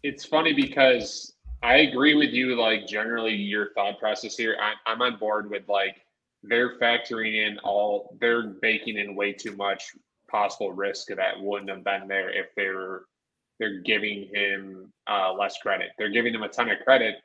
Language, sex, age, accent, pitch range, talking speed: English, male, 20-39, American, 100-115 Hz, 175 wpm